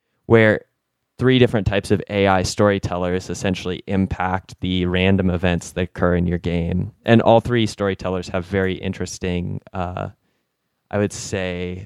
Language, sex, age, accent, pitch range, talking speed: English, male, 20-39, American, 90-100 Hz, 140 wpm